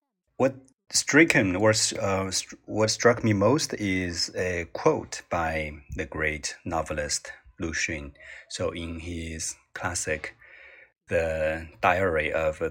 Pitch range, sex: 80-100 Hz, male